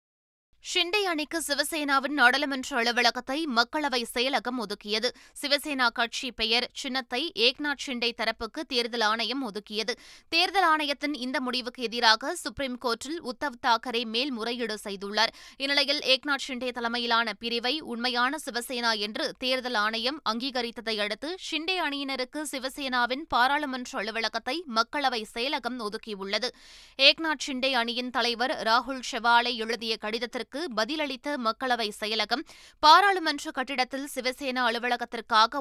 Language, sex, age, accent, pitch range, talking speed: Tamil, female, 20-39, native, 235-285 Hz, 110 wpm